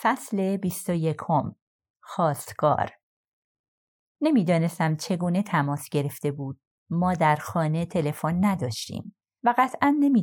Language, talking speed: Persian, 95 wpm